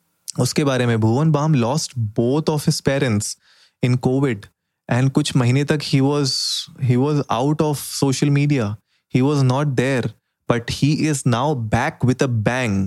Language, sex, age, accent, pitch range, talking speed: Hindi, male, 20-39, native, 120-150 Hz, 170 wpm